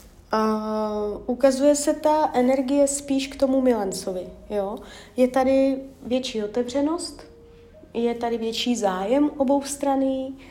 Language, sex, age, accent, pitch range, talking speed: Czech, female, 20-39, native, 210-265 Hz, 120 wpm